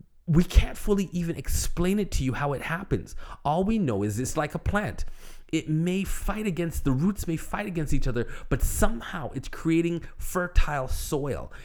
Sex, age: male, 30-49